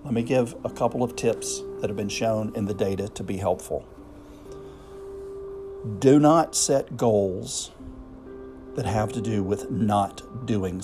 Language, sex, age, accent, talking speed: English, male, 50-69, American, 155 wpm